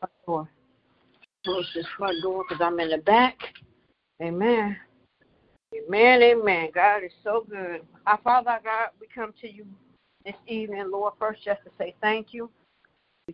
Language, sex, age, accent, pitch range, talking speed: English, female, 60-79, American, 195-235 Hz, 160 wpm